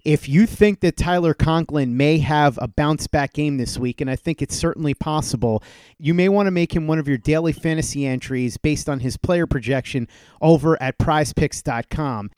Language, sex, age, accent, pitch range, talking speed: English, male, 30-49, American, 145-170 Hz, 190 wpm